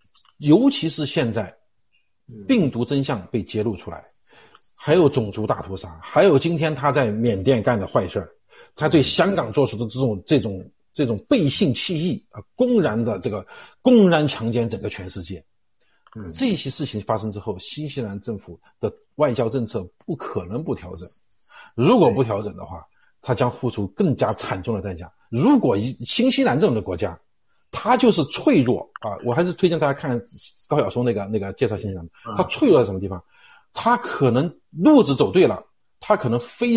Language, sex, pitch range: Chinese, male, 105-160 Hz